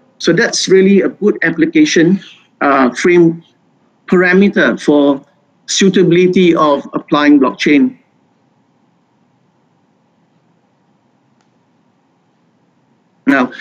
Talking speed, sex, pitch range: 65 wpm, male, 170-245 Hz